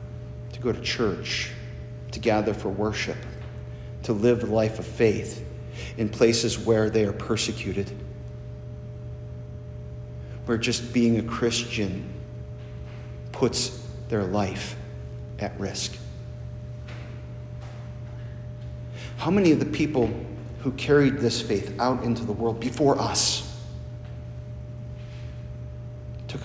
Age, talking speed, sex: 50-69, 100 wpm, male